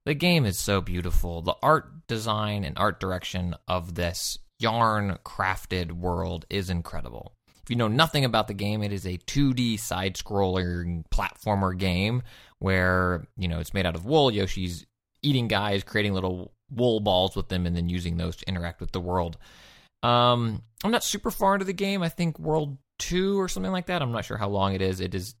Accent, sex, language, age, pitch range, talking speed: American, male, English, 20-39, 95-120 Hz, 195 wpm